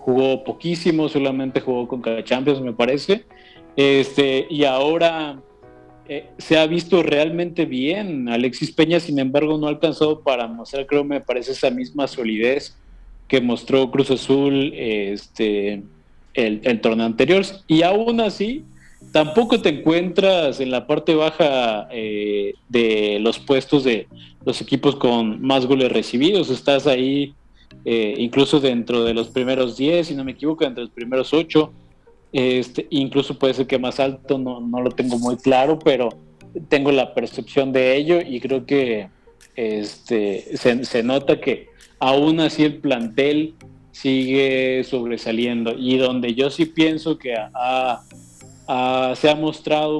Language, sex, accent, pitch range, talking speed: Spanish, male, Mexican, 120-150 Hz, 145 wpm